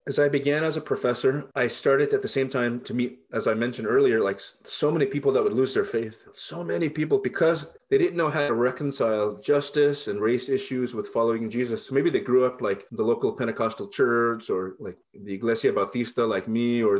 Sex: male